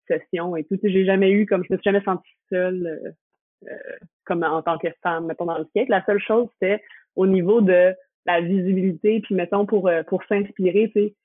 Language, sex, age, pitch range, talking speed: French, female, 20-39, 175-205 Hz, 230 wpm